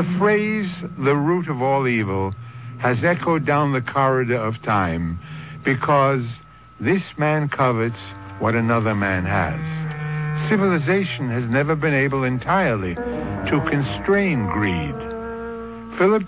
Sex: male